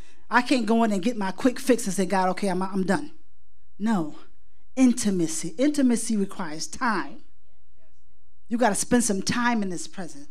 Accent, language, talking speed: American, English, 170 wpm